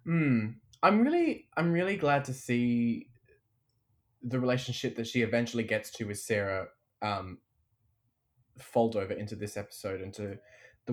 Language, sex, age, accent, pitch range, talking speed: English, male, 20-39, Australian, 100-125 Hz, 135 wpm